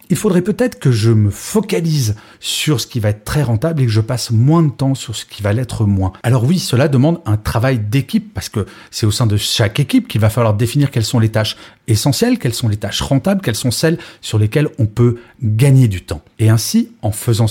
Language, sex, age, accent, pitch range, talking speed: French, male, 40-59, French, 110-150 Hz, 240 wpm